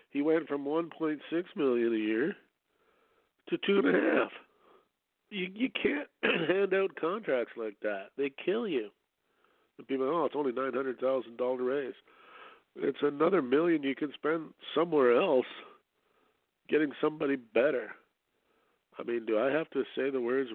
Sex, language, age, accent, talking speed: male, English, 50-69, American, 160 wpm